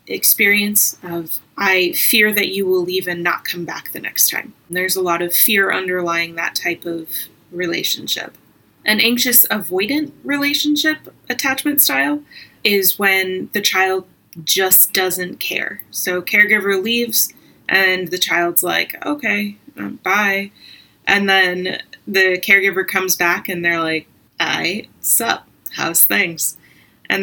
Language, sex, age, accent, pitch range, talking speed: English, female, 20-39, American, 185-230 Hz, 135 wpm